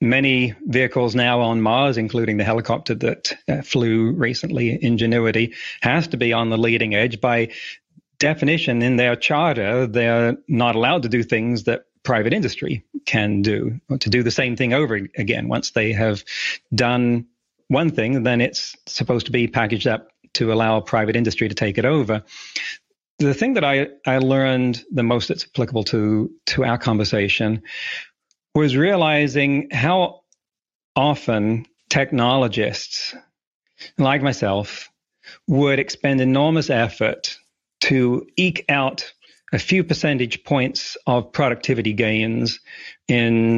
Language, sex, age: English, male, 40-59